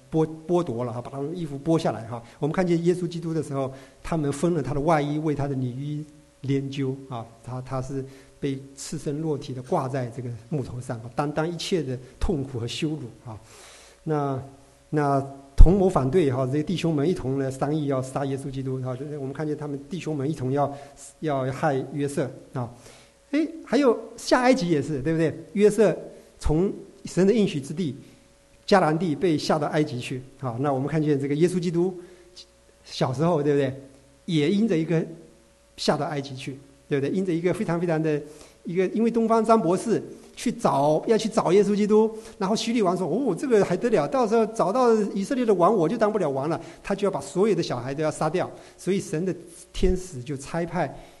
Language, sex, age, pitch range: English, male, 50-69, 135-185 Hz